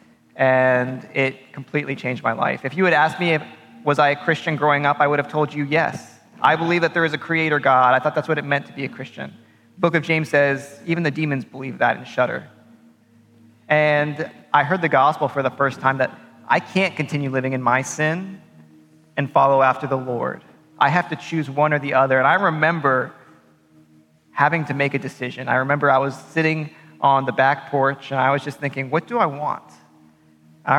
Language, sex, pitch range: English, male, 130-155 Hz